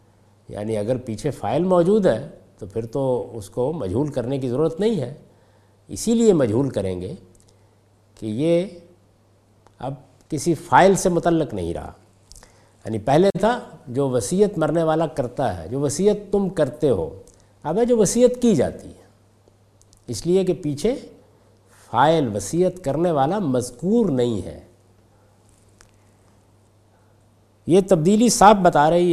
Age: 60-79